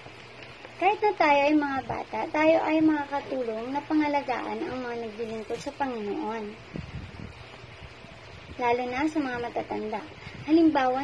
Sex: male